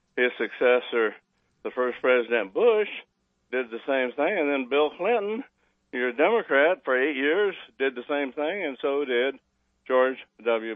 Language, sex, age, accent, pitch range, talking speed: English, male, 60-79, American, 105-135 Hz, 155 wpm